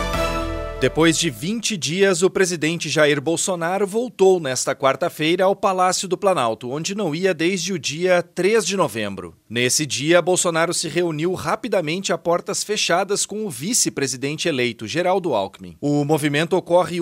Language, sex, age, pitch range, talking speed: Portuguese, male, 30-49, 135-185 Hz, 150 wpm